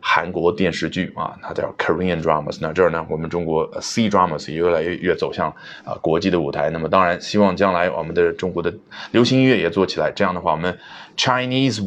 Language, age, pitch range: Chinese, 30-49, 85-130 Hz